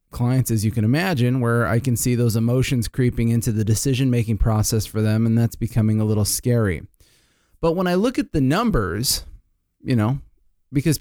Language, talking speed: English, 190 wpm